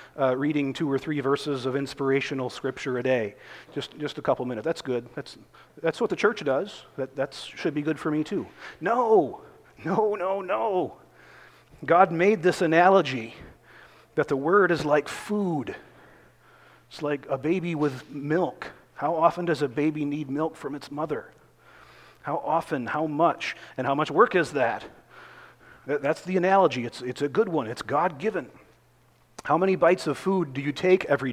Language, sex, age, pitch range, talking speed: English, male, 40-59, 135-180 Hz, 175 wpm